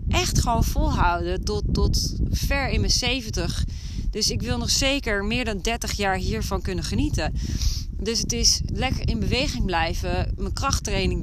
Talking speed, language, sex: 160 wpm, Dutch, female